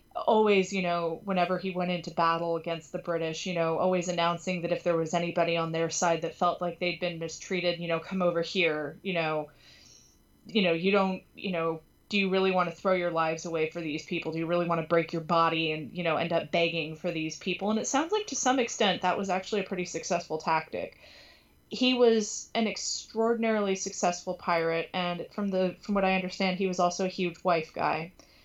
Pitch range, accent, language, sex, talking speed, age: 170-200 Hz, American, English, female, 220 wpm, 20-39